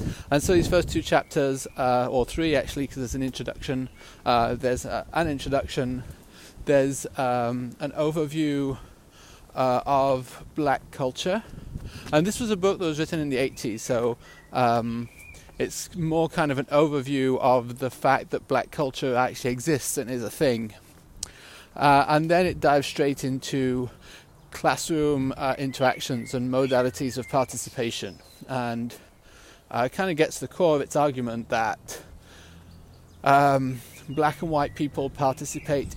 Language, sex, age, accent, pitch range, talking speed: English, male, 30-49, British, 125-145 Hz, 150 wpm